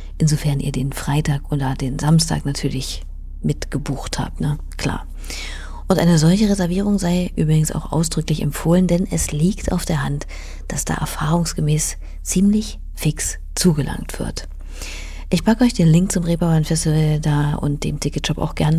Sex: female